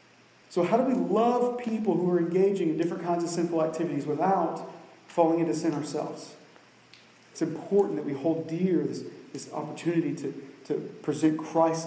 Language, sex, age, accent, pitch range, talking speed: English, male, 40-59, American, 140-165 Hz, 165 wpm